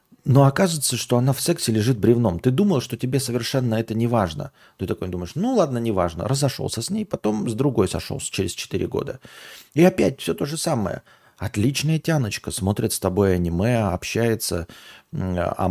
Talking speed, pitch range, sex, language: 180 wpm, 105-135 Hz, male, Russian